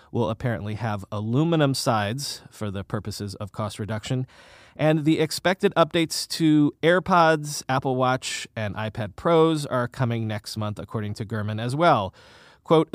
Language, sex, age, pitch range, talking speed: English, male, 30-49, 115-160 Hz, 150 wpm